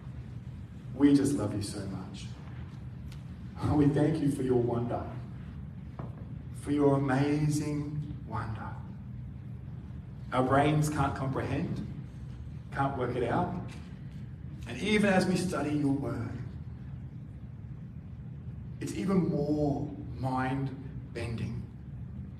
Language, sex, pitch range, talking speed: English, male, 120-140 Hz, 95 wpm